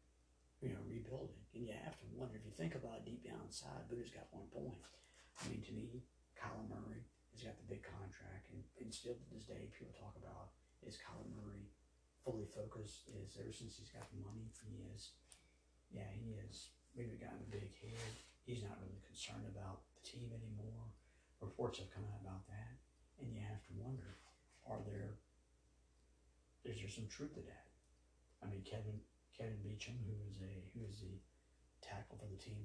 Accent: American